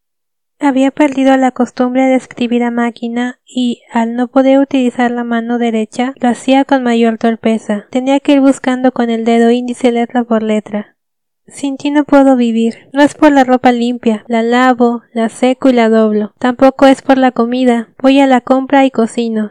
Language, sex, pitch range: Spanish, female, 230-260 Hz